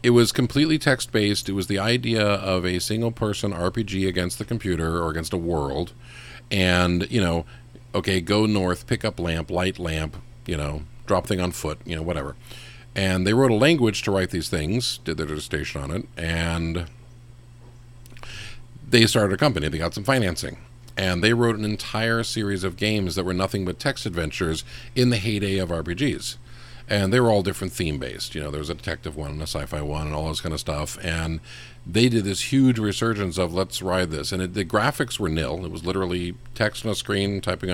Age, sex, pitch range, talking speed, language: 50-69, male, 90-120 Hz, 205 wpm, English